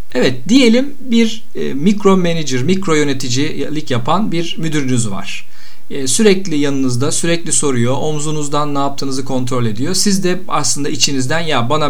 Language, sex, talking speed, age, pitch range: Turkish, male, 140 wpm, 50-69, 125-195 Hz